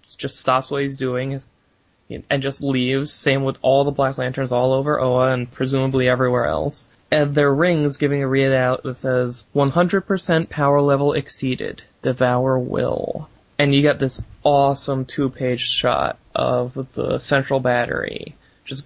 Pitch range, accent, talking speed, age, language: 125-140 Hz, American, 155 wpm, 20-39, English